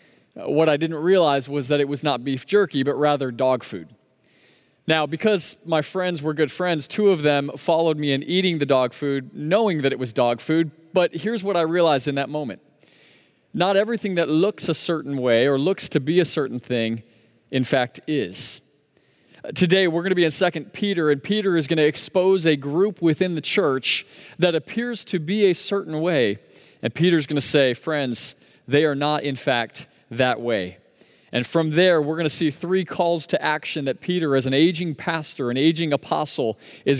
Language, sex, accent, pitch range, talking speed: English, male, American, 135-170 Hz, 200 wpm